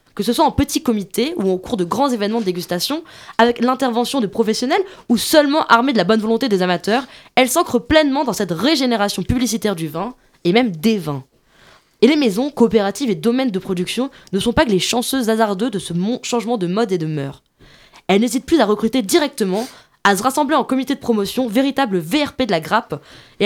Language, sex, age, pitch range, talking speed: French, female, 20-39, 195-255 Hz, 210 wpm